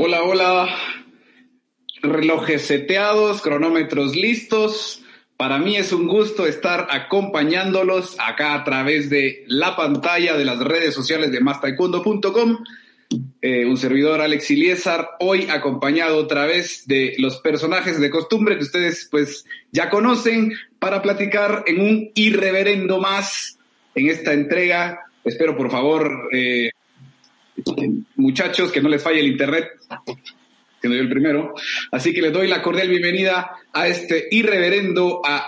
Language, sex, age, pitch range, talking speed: Spanish, male, 30-49, 150-205 Hz, 130 wpm